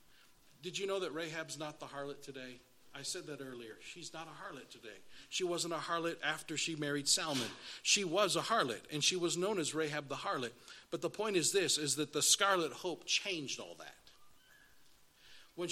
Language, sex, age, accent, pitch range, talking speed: English, male, 40-59, American, 140-175 Hz, 200 wpm